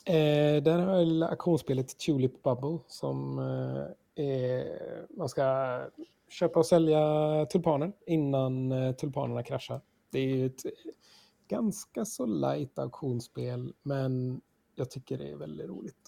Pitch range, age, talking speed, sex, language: 120-150 Hz, 30-49, 115 wpm, male, Swedish